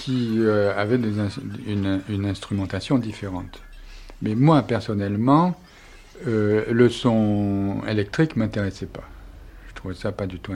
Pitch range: 100-120 Hz